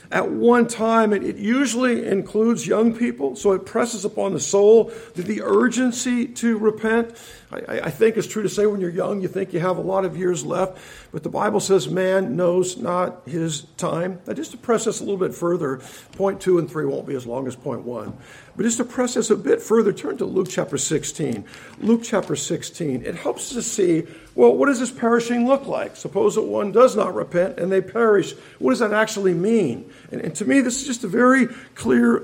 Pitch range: 180-225 Hz